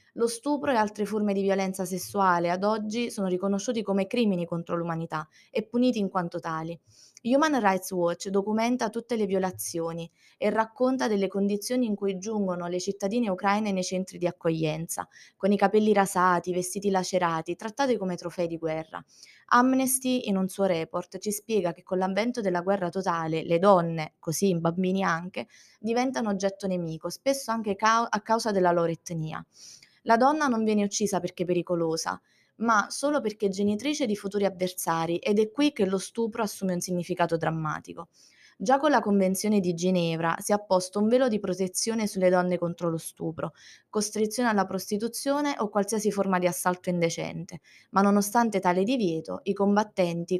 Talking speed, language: 165 wpm, Italian